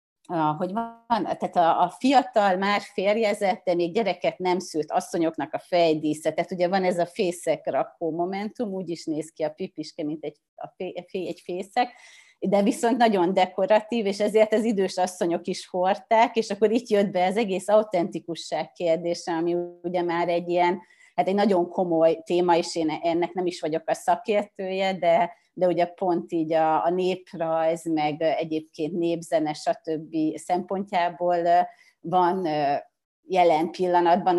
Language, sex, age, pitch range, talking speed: Hungarian, female, 30-49, 170-210 Hz, 160 wpm